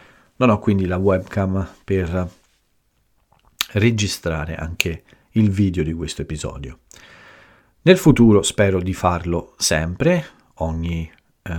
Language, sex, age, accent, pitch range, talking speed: Italian, male, 40-59, native, 85-105 Hz, 105 wpm